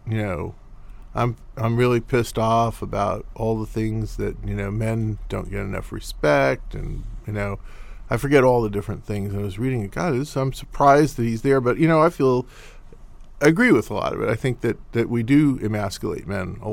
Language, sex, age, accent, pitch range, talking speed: English, male, 40-59, American, 105-135 Hz, 210 wpm